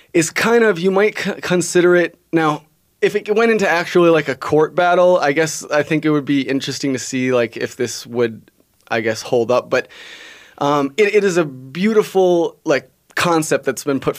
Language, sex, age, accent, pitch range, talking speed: English, male, 20-39, American, 135-165 Hz, 200 wpm